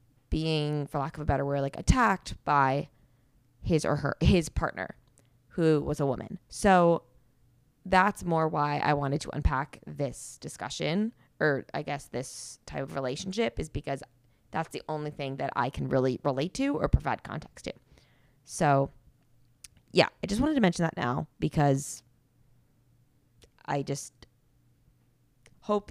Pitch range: 130-160 Hz